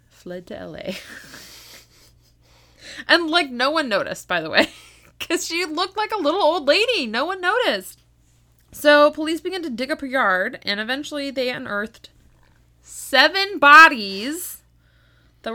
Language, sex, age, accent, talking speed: English, female, 20-39, American, 145 wpm